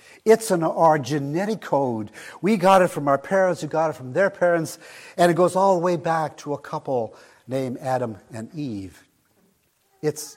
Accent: American